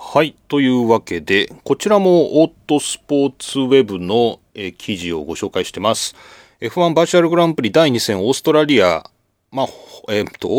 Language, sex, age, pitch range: Japanese, male, 30-49, 105-175 Hz